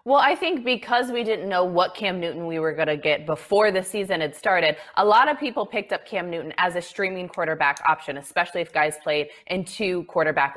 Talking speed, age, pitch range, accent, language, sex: 225 wpm, 20-39, 165-230 Hz, American, English, female